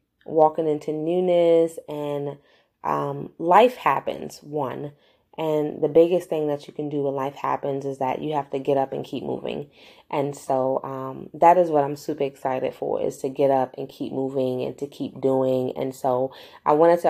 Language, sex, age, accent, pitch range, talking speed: English, female, 20-39, American, 145-170 Hz, 195 wpm